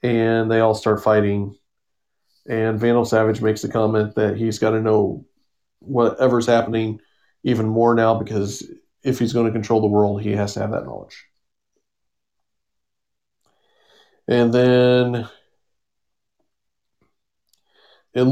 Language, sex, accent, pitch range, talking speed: English, male, American, 110-125 Hz, 125 wpm